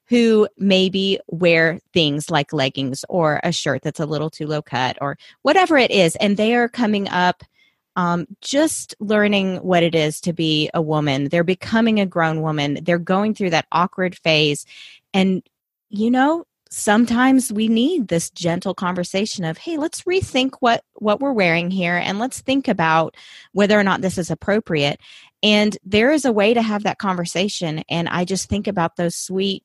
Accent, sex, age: American, female, 30-49